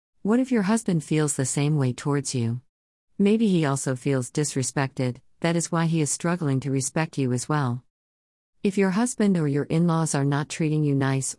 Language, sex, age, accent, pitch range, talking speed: English, female, 50-69, American, 130-160 Hz, 195 wpm